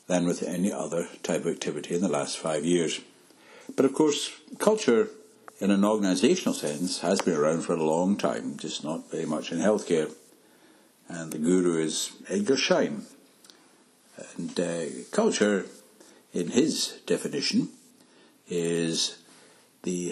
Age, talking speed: 60-79, 140 wpm